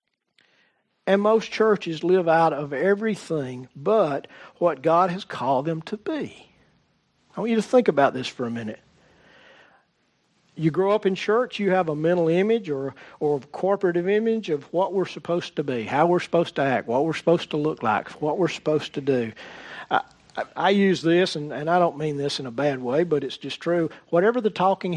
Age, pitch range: 50-69, 155-205 Hz